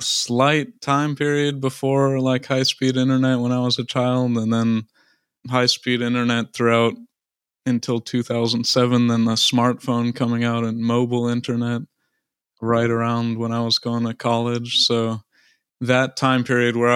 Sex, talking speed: male, 140 wpm